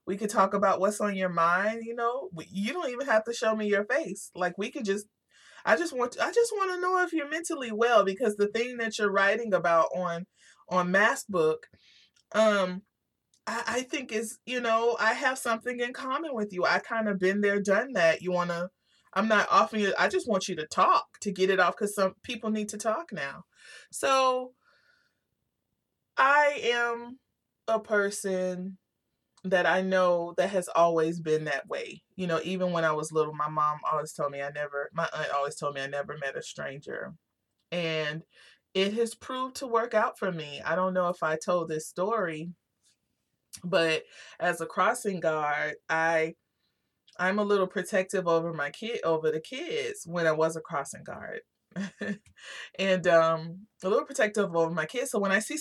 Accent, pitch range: American, 170-225 Hz